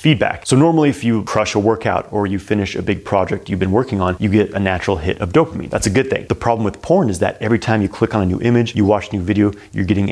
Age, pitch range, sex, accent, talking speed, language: 30-49, 95-115 Hz, male, American, 290 wpm, English